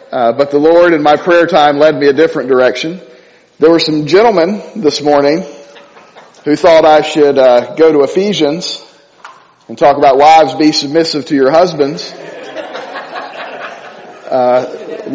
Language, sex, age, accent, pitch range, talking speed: English, male, 40-59, American, 145-195 Hz, 145 wpm